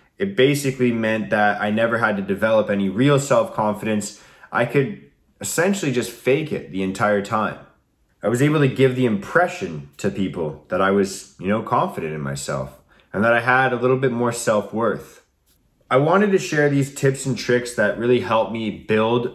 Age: 20-39